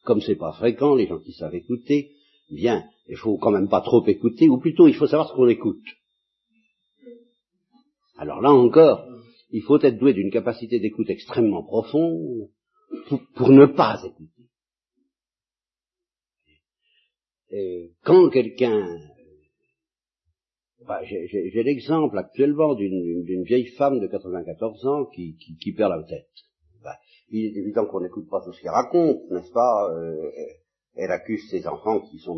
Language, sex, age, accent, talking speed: French, male, 50-69, French, 155 wpm